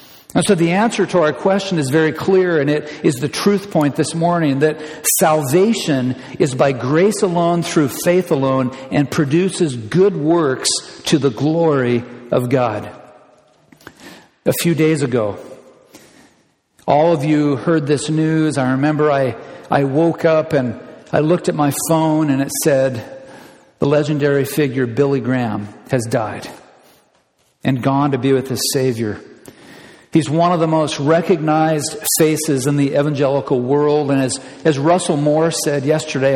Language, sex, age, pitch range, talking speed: English, male, 50-69, 135-160 Hz, 155 wpm